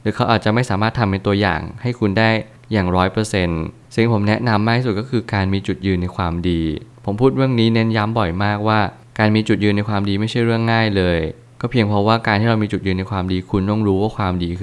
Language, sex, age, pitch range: Thai, male, 20-39, 95-115 Hz